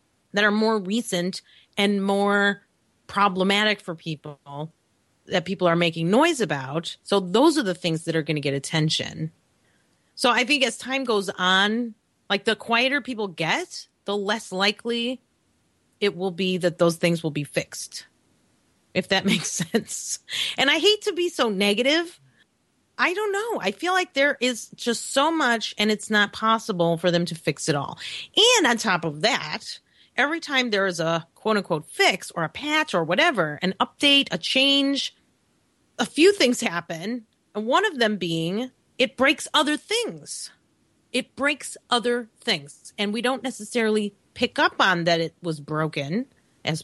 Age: 30-49